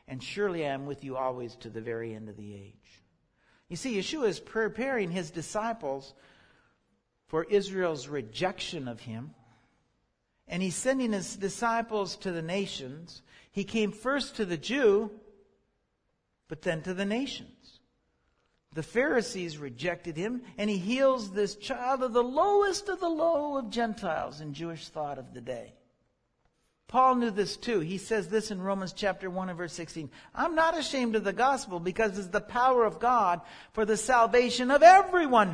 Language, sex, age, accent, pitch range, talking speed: English, male, 60-79, American, 150-230 Hz, 165 wpm